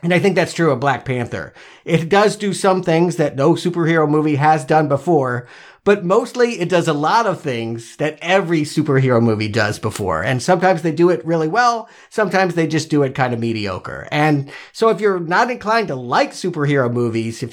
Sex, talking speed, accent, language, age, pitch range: male, 205 wpm, American, English, 50-69, 135-180 Hz